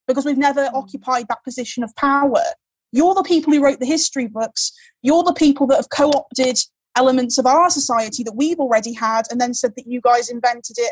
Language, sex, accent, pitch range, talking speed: English, female, British, 245-290 Hz, 210 wpm